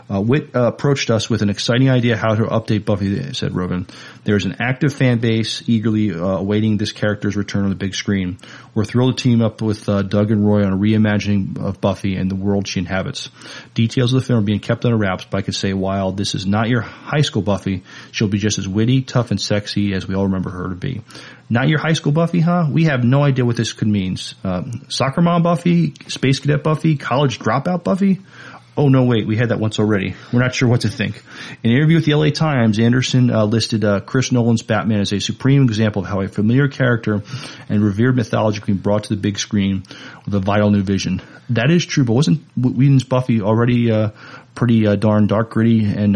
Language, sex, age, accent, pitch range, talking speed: English, male, 40-59, American, 105-130 Hz, 230 wpm